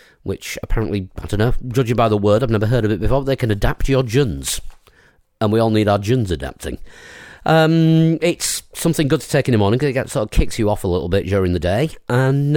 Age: 40-59